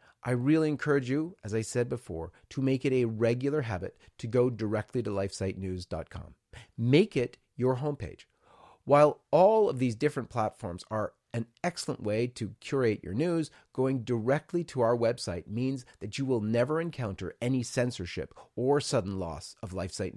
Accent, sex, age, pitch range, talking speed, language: American, male, 40-59, 110-150 Hz, 165 wpm, English